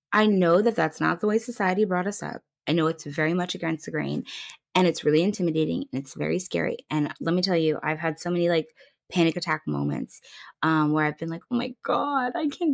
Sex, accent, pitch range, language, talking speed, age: female, American, 180-275 Hz, English, 235 wpm, 20-39